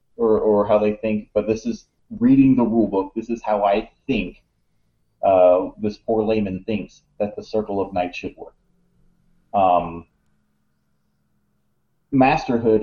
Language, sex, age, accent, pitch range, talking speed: English, male, 30-49, American, 100-115 Hz, 145 wpm